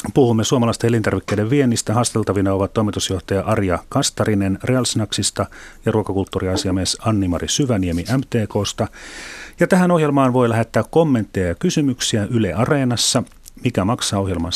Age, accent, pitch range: 40-59, native, 95-115 Hz